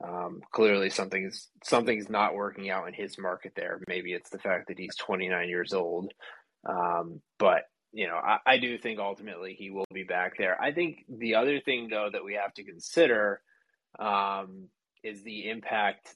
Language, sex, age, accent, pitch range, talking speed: English, male, 20-39, American, 95-115 Hz, 180 wpm